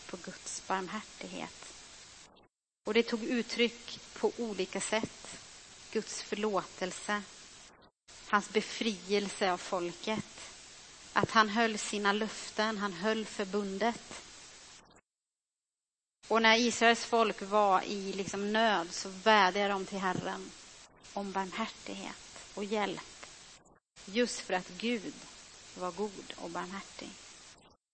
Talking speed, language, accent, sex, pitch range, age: 105 wpm, Swedish, native, female, 190-225 Hz, 30-49